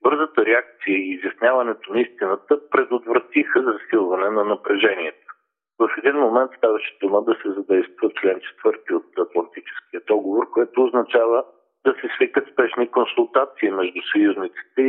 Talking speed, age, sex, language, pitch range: 130 wpm, 50-69, male, Bulgarian, 300-425 Hz